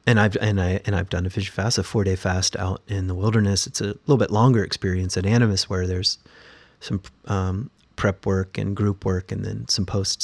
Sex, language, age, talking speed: male, English, 30-49, 225 wpm